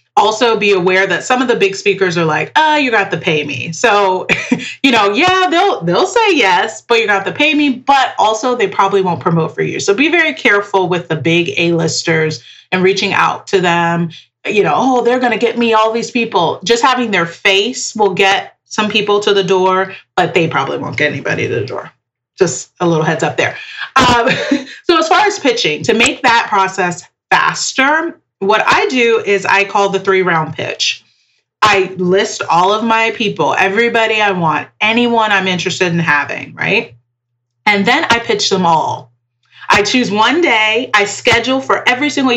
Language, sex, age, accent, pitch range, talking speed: English, female, 30-49, American, 185-250 Hz, 200 wpm